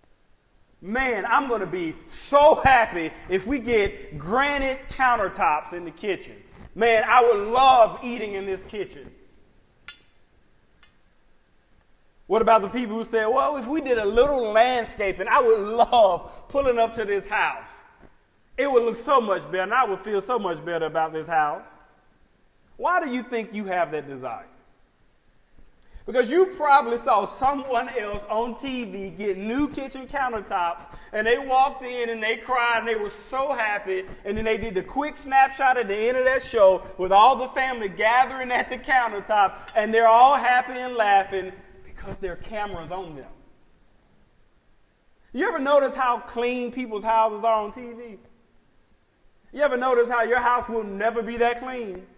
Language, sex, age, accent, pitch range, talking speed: English, male, 30-49, American, 200-260 Hz, 165 wpm